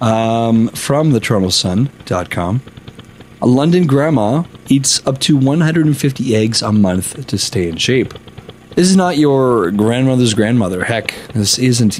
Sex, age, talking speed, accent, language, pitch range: male, 30-49, 135 wpm, American, English, 105-130 Hz